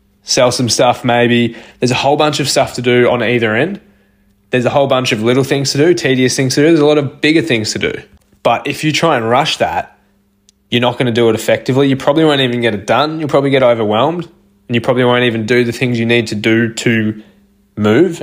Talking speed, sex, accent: 245 wpm, male, Australian